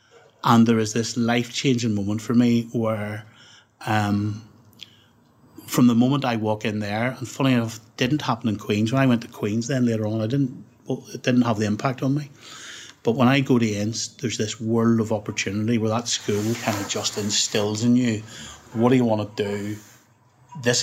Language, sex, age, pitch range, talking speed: English, male, 30-49, 110-130 Hz, 195 wpm